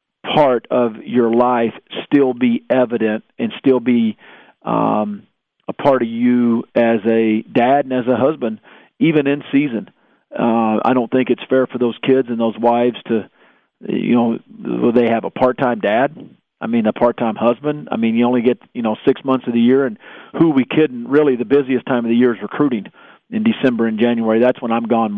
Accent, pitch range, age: American, 115-130 Hz, 40-59